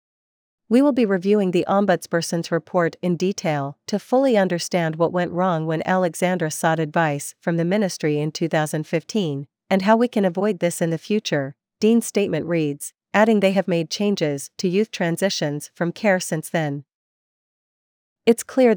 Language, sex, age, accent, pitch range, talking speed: English, female, 40-59, American, 165-200 Hz, 160 wpm